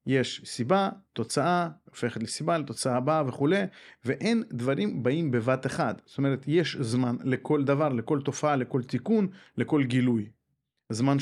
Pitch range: 130-200 Hz